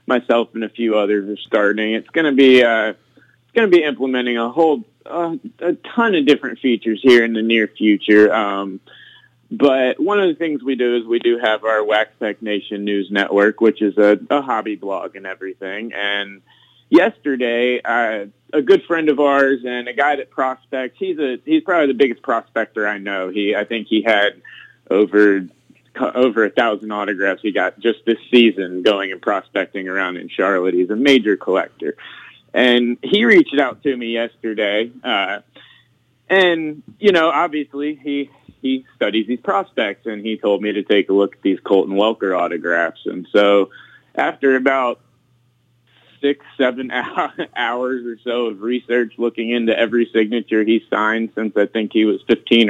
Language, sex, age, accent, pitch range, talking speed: English, male, 30-49, American, 105-130 Hz, 180 wpm